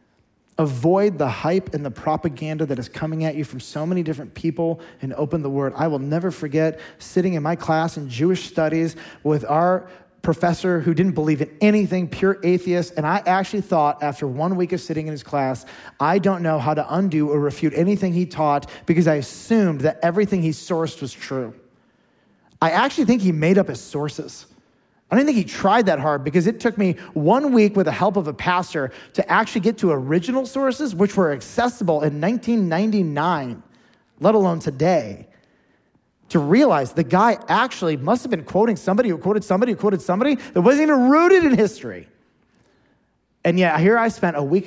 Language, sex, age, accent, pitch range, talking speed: English, male, 30-49, American, 150-195 Hz, 190 wpm